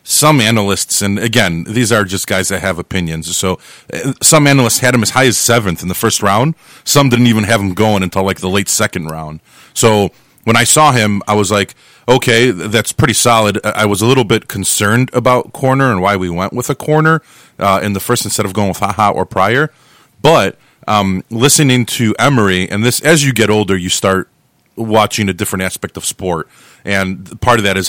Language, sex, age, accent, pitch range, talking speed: English, male, 30-49, American, 95-125 Hz, 210 wpm